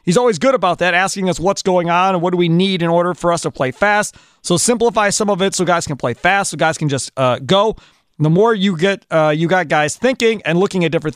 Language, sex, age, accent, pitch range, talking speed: English, male, 40-59, American, 140-185 Hz, 280 wpm